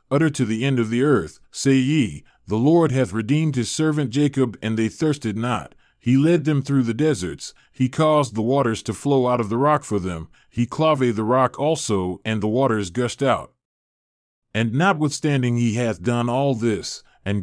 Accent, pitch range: American, 110-145 Hz